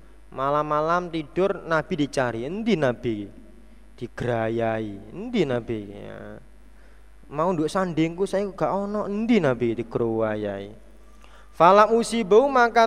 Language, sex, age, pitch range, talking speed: Indonesian, male, 30-49, 135-205 Hz, 95 wpm